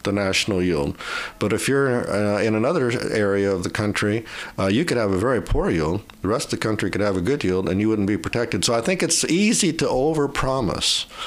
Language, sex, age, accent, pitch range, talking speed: English, male, 50-69, American, 100-120 Hz, 230 wpm